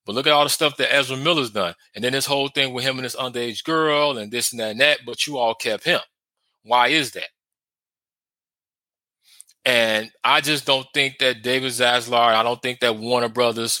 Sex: male